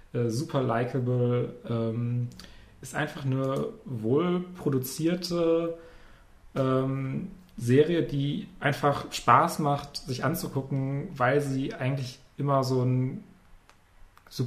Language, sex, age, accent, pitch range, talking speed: German, male, 30-49, German, 125-145 Hz, 95 wpm